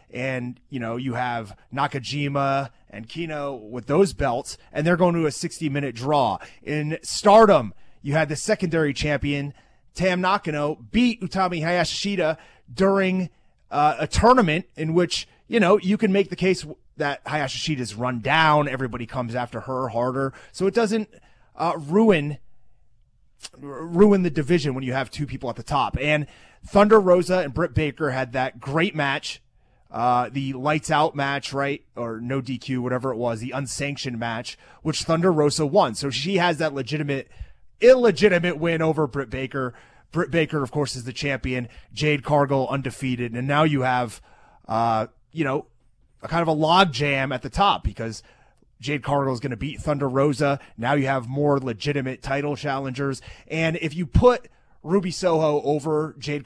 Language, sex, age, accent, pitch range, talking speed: English, male, 30-49, American, 130-165 Hz, 165 wpm